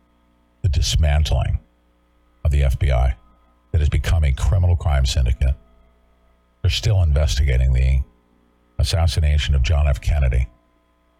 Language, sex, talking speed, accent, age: English, male, 105 wpm, American, 50-69